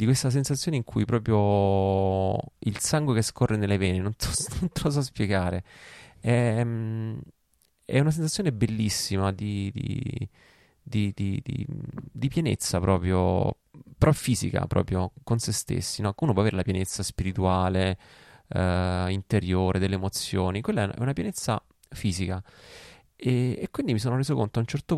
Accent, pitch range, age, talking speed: native, 95-135 Hz, 20-39, 150 wpm